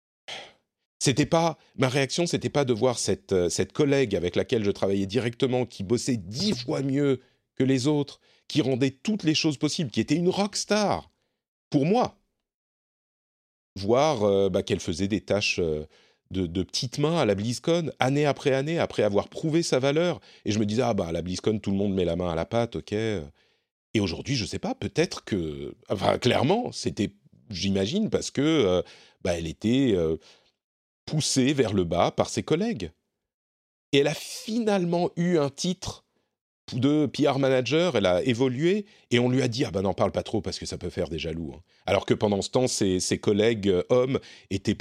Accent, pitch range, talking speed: French, 95-145 Hz, 200 wpm